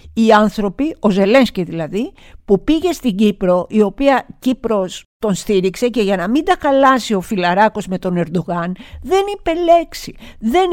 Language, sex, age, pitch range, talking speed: Greek, female, 50-69, 190-270 Hz, 155 wpm